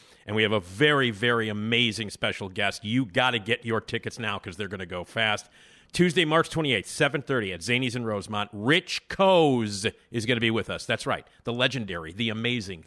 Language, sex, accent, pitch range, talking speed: English, male, American, 110-140 Hz, 205 wpm